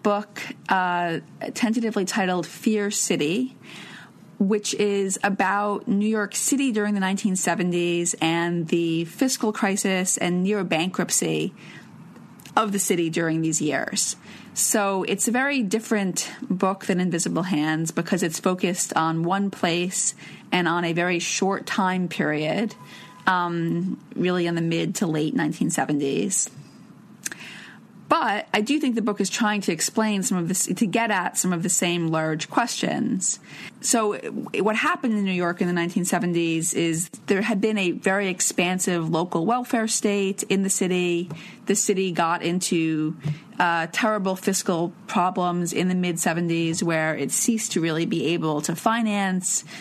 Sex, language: female, English